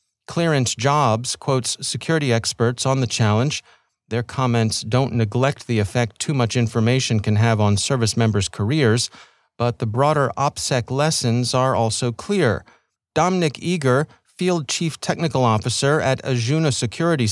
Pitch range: 115-150 Hz